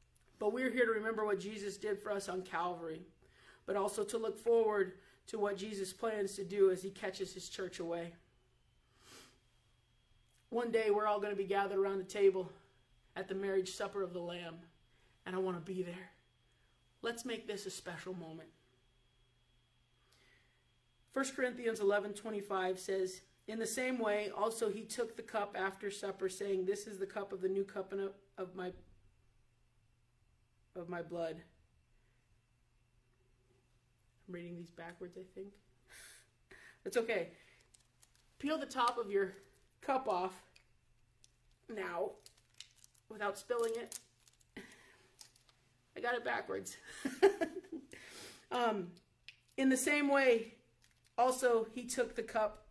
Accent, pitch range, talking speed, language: American, 155-215 Hz, 140 wpm, English